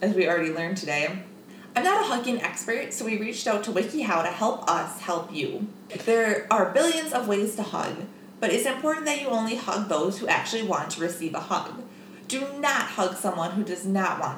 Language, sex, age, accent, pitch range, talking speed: English, female, 20-39, American, 190-245 Hz, 215 wpm